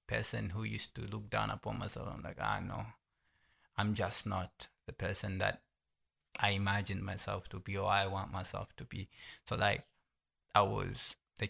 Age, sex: 20-39, male